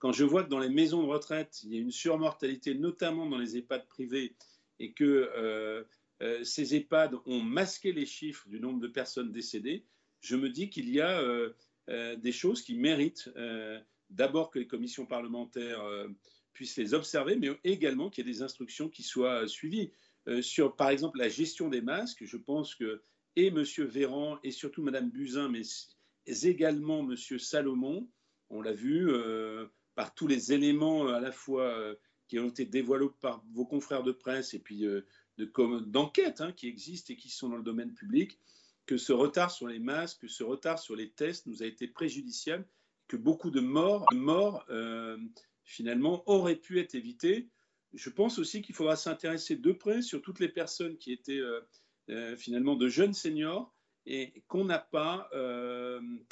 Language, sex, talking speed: French, male, 190 wpm